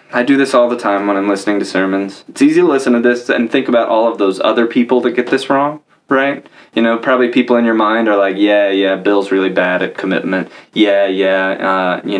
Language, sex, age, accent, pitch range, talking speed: English, male, 20-39, American, 100-135 Hz, 245 wpm